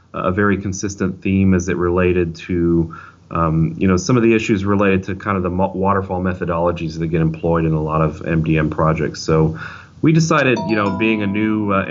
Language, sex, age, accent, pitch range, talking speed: English, male, 30-49, American, 85-95 Hz, 200 wpm